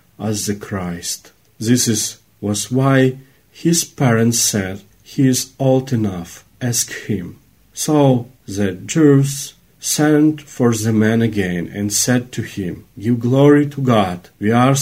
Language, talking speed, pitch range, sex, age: Ukrainian, 140 wpm, 105-145 Hz, male, 40-59